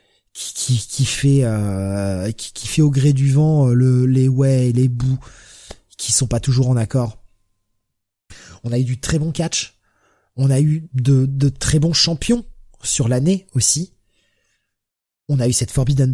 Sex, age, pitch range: male, 20-39, 105-145 Hz